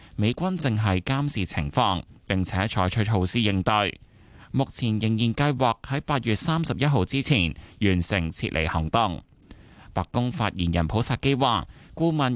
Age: 20-39